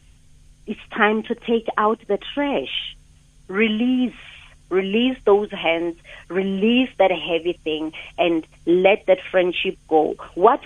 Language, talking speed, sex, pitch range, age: English, 120 wpm, female, 175-225 Hz, 40-59